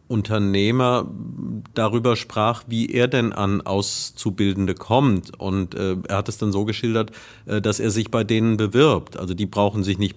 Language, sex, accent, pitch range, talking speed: German, male, German, 100-120 Hz, 170 wpm